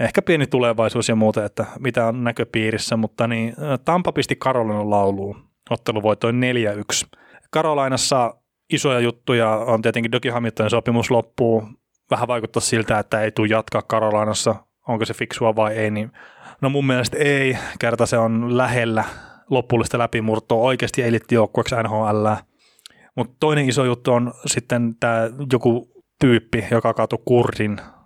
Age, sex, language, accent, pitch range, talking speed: 20-39, male, Finnish, native, 110-125 Hz, 135 wpm